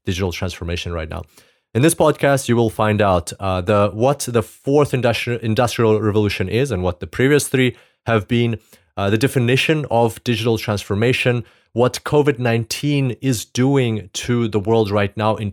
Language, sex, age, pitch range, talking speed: English, male, 30-49, 95-125 Hz, 170 wpm